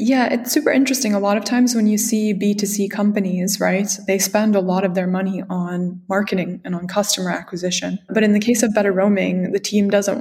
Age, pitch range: 20-39, 190-220 Hz